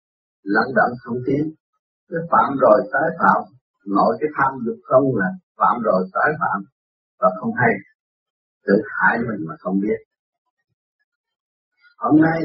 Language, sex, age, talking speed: Vietnamese, male, 50-69, 145 wpm